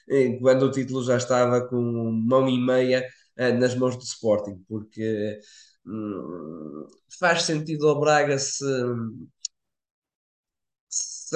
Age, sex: 20-39, male